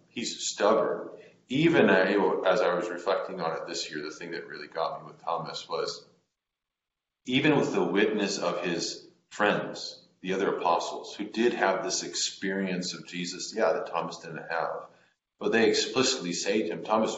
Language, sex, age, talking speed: English, male, 40-59, 170 wpm